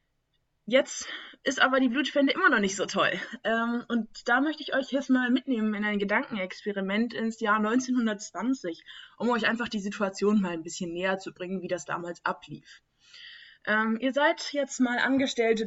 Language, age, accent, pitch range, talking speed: German, 20-39, German, 190-245 Hz, 175 wpm